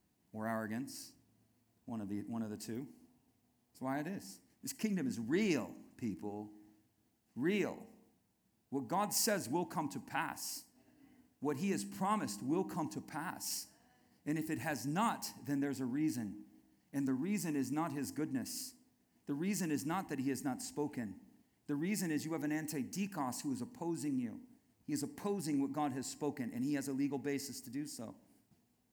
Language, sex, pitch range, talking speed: English, male, 140-215 Hz, 180 wpm